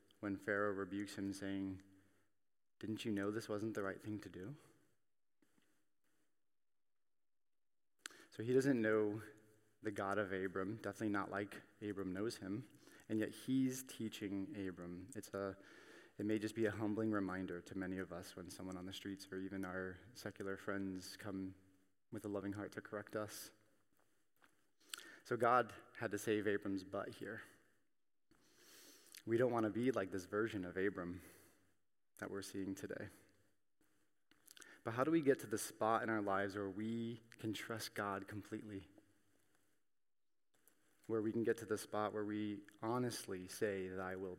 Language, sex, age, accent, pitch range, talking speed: English, male, 30-49, American, 95-110 Hz, 160 wpm